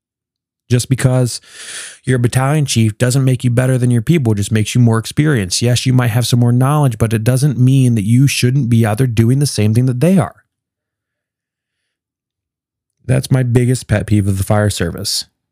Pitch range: 100-125 Hz